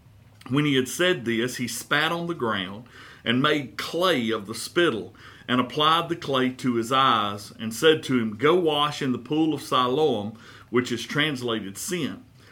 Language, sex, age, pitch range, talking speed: English, male, 50-69, 115-140 Hz, 180 wpm